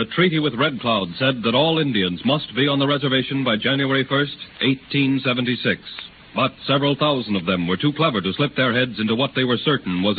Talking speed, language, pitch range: 210 wpm, English, 115-145 Hz